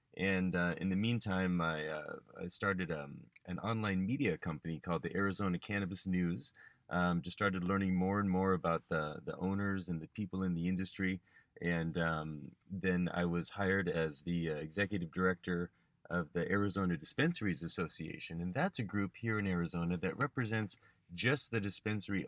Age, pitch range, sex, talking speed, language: 30-49, 85-100 Hz, male, 170 wpm, English